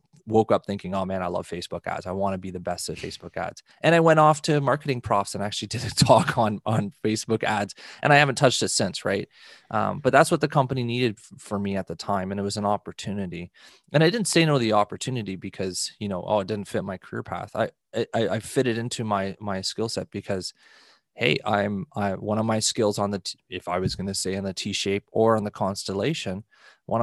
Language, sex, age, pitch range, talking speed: English, male, 20-39, 95-115 Hz, 245 wpm